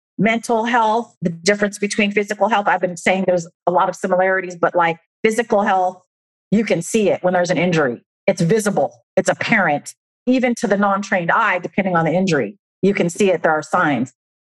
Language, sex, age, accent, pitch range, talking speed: English, female, 40-59, American, 180-215 Hz, 195 wpm